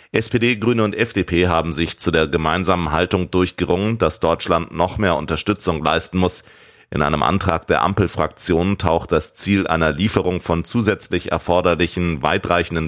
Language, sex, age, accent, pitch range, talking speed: German, male, 30-49, German, 85-100 Hz, 150 wpm